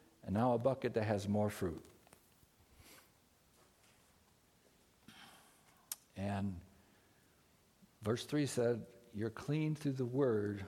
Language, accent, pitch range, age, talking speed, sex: English, American, 105-135 Hz, 60-79, 95 wpm, male